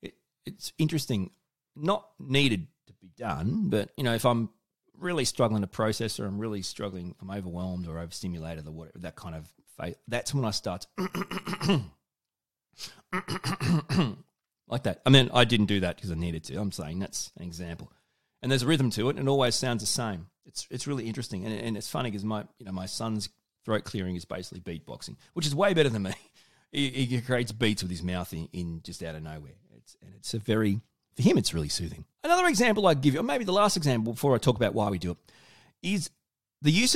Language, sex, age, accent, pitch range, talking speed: English, male, 30-49, Australian, 90-130 Hz, 215 wpm